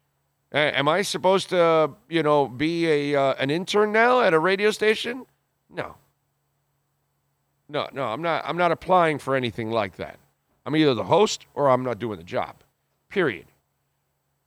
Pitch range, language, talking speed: 140-185 Hz, English, 160 wpm